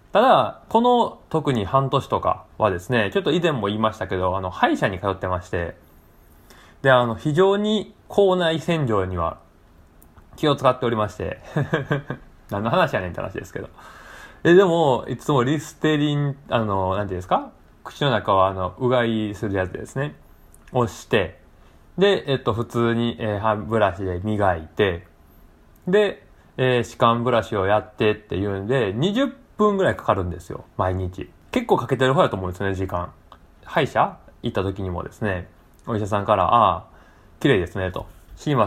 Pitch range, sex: 90-140 Hz, male